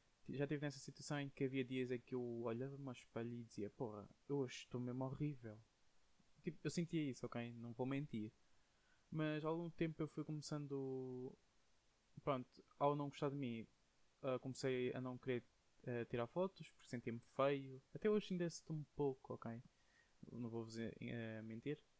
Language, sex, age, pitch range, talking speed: Portuguese, male, 20-39, 115-145 Hz, 175 wpm